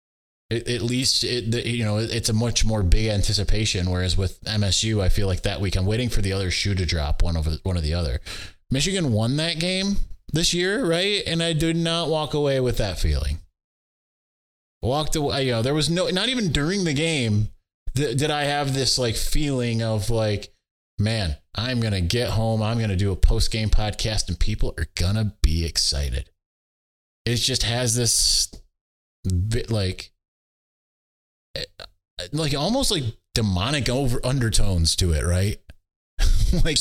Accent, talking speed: American, 175 wpm